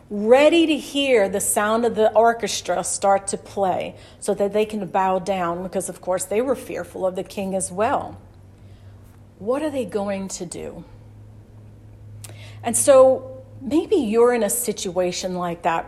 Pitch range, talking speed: 185-245 Hz, 165 wpm